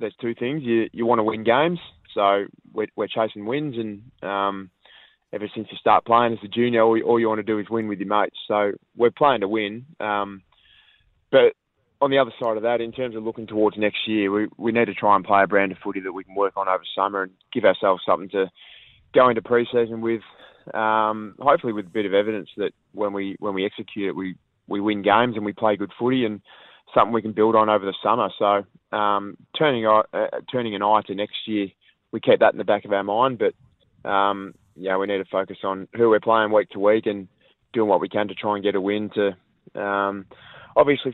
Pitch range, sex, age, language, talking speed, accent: 100-115 Hz, male, 20-39, English, 235 wpm, Australian